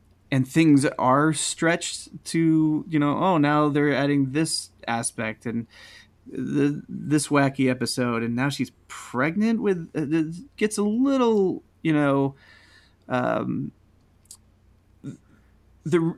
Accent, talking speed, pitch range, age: American, 115 wpm, 110-150 Hz, 30-49